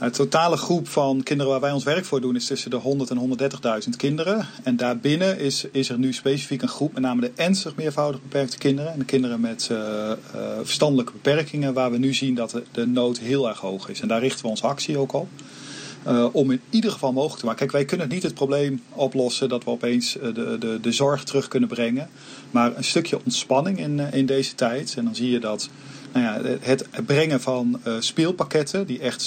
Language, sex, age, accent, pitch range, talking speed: Dutch, male, 40-59, Dutch, 120-145 Hz, 225 wpm